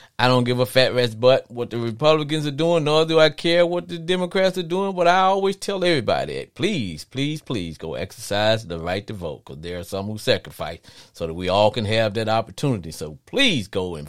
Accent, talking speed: American, 230 wpm